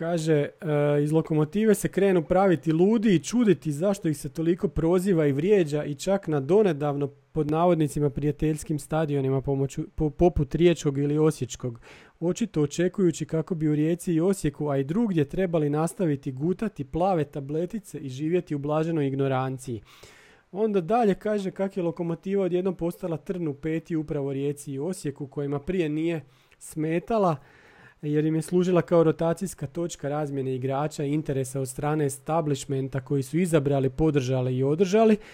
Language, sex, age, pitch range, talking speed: Croatian, male, 40-59, 145-180 Hz, 150 wpm